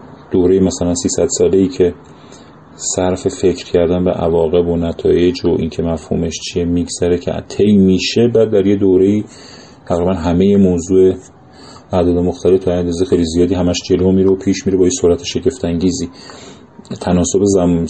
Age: 30-49